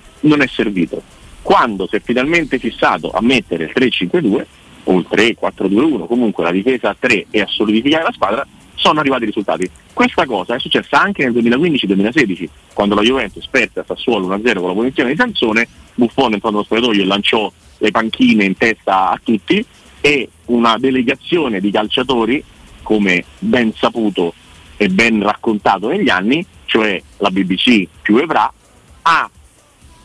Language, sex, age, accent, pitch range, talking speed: Italian, male, 40-59, native, 100-130 Hz, 155 wpm